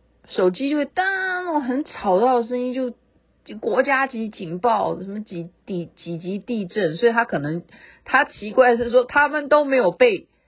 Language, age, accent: Chinese, 40-59, native